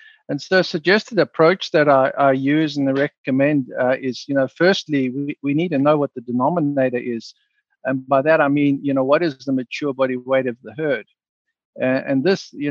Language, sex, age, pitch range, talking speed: English, male, 50-69, 130-160 Hz, 215 wpm